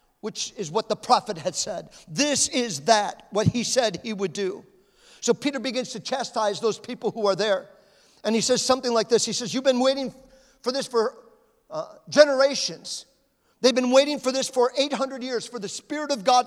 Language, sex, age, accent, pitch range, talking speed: English, male, 50-69, American, 225-275 Hz, 200 wpm